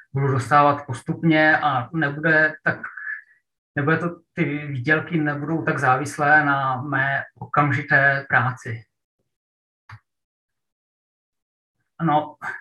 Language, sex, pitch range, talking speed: Czech, male, 140-160 Hz, 85 wpm